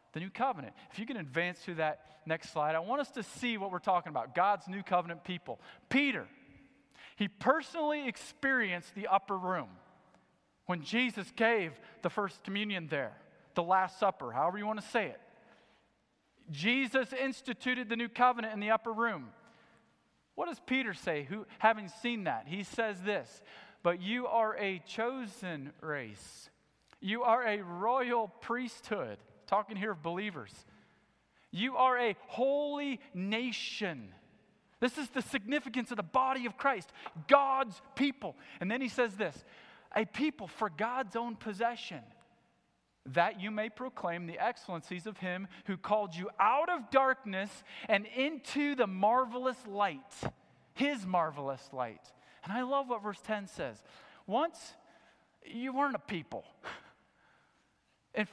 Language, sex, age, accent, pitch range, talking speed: English, male, 40-59, American, 190-250 Hz, 150 wpm